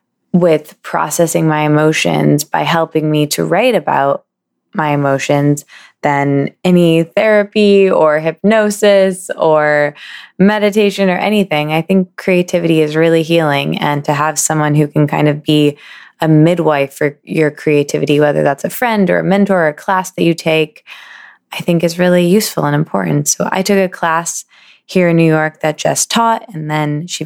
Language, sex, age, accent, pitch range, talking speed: English, female, 20-39, American, 155-200 Hz, 165 wpm